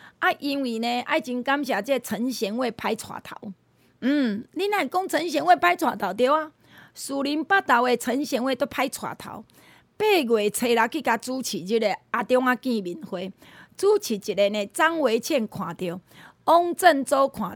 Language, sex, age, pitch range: Chinese, female, 30-49, 225-300 Hz